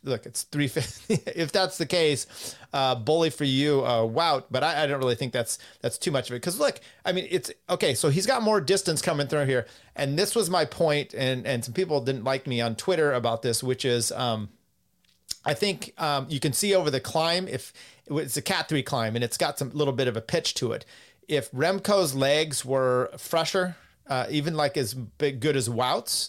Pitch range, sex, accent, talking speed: 125-165 Hz, male, American, 220 wpm